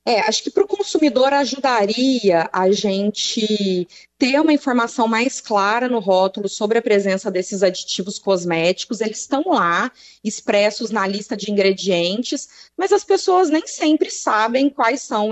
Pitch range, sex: 195-245 Hz, female